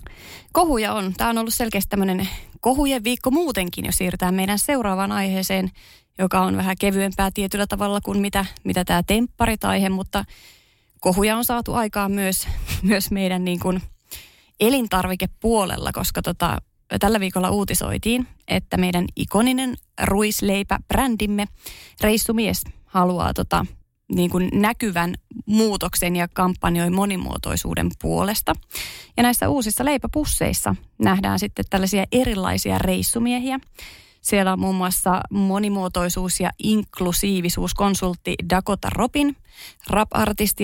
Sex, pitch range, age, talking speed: female, 180-210 Hz, 20-39, 120 wpm